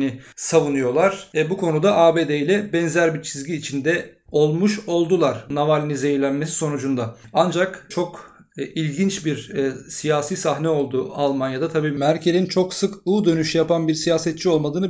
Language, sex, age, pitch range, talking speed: Turkish, male, 40-59, 150-175 Hz, 135 wpm